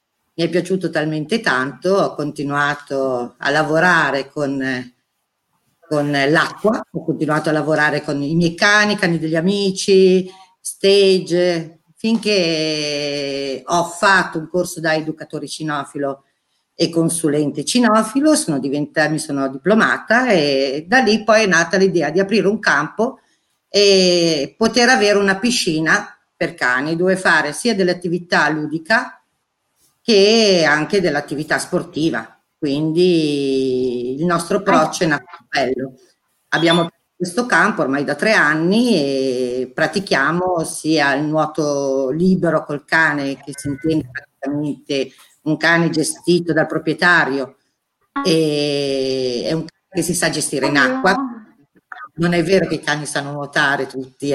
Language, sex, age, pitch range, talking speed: Italian, female, 50-69, 145-185 Hz, 130 wpm